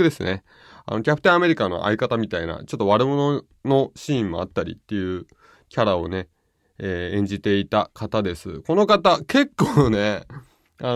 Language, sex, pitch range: Japanese, male, 100-150 Hz